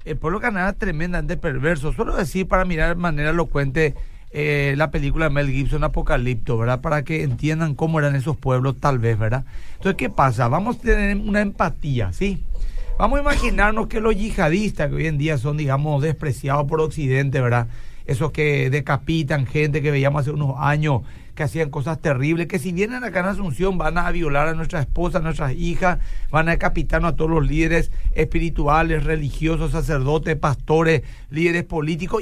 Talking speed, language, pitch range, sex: 180 wpm, Spanish, 145-195 Hz, male